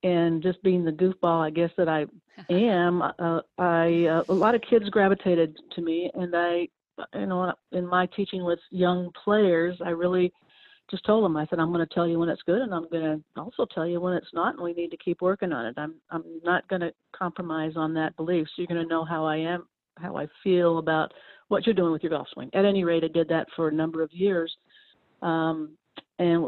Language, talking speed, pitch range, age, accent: English, 235 wpm, 160-185 Hz, 50-69, American